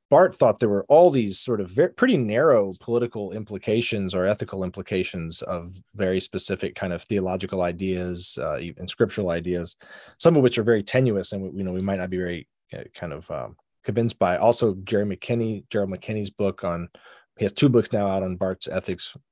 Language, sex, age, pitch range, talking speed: English, male, 30-49, 95-115 Hz, 190 wpm